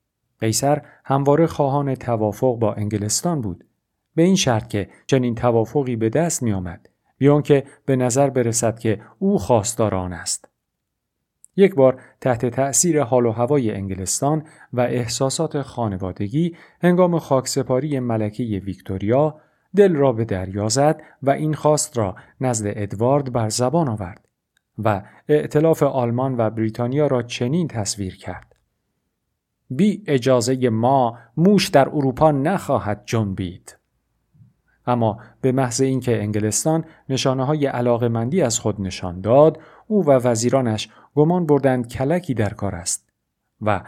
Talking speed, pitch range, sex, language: 125 wpm, 110-145 Hz, male, Persian